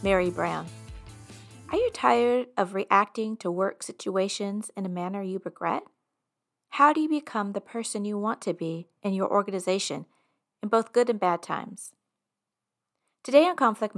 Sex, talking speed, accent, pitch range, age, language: female, 160 wpm, American, 190-245 Hz, 30-49, English